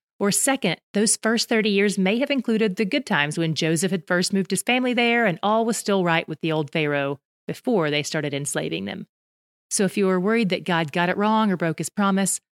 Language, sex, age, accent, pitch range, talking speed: English, female, 30-49, American, 165-205 Hz, 230 wpm